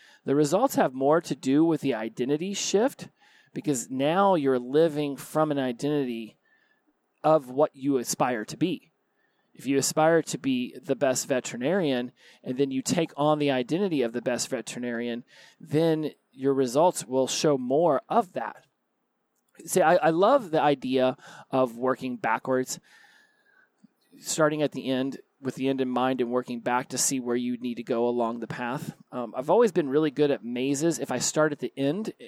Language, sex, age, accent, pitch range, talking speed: English, male, 30-49, American, 130-160 Hz, 175 wpm